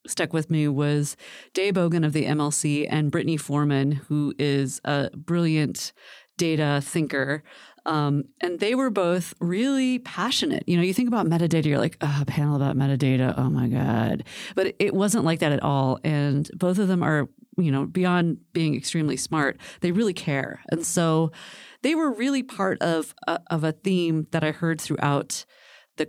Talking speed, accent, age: 180 wpm, American, 30-49